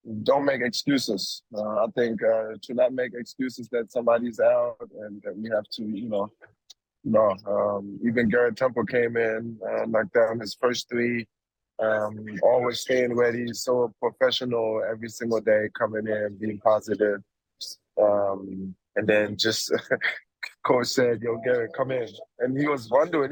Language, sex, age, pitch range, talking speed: English, male, 20-39, 110-130 Hz, 155 wpm